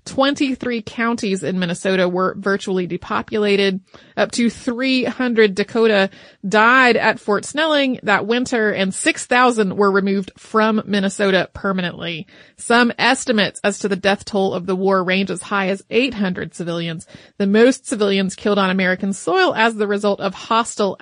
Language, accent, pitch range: English, American, 195-235 Hz